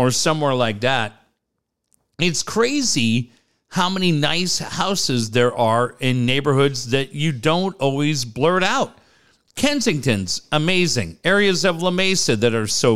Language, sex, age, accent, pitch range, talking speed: English, male, 50-69, American, 125-170 Hz, 135 wpm